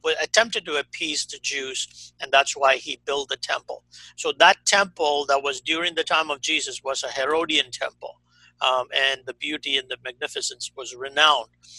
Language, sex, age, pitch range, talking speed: English, male, 50-69, 135-190 Hz, 180 wpm